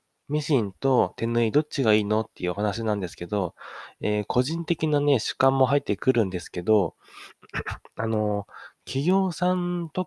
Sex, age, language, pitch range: male, 20-39, Japanese, 100-145 Hz